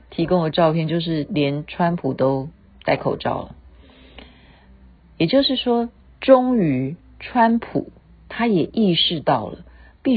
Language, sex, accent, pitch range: Chinese, female, native, 125-180 Hz